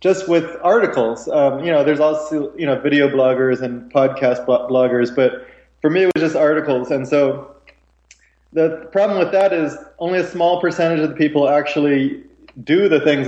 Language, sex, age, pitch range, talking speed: English, male, 20-39, 135-155 Hz, 180 wpm